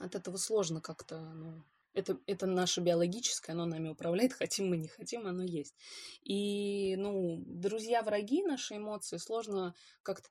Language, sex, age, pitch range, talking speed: Russian, female, 20-39, 170-205 Hz, 150 wpm